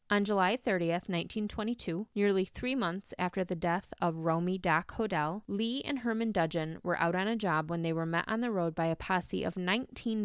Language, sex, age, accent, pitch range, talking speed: English, female, 20-39, American, 175-225 Hz, 205 wpm